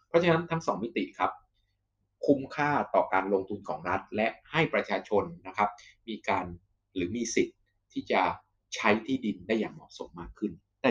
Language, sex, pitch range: Thai, male, 100-140 Hz